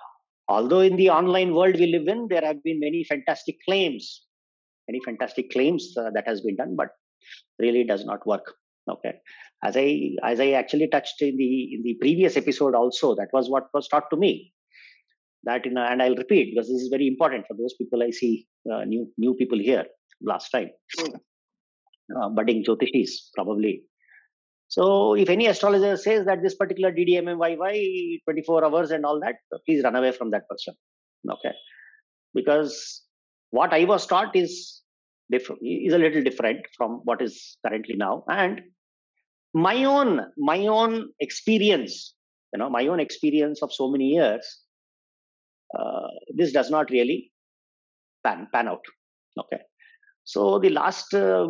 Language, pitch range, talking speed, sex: English, 130-200 Hz, 165 wpm, male